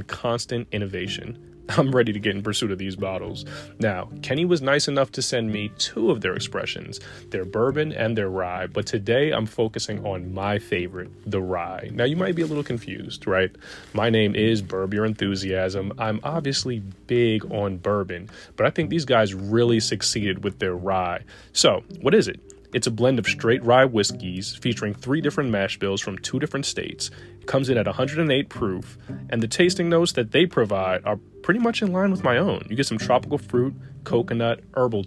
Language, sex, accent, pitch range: English, male, American, 100-130 Hz